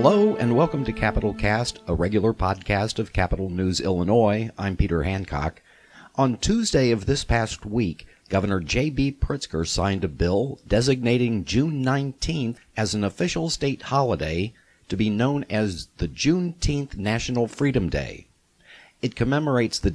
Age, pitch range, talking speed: 50-69, 95-130 Hz, 145 wpm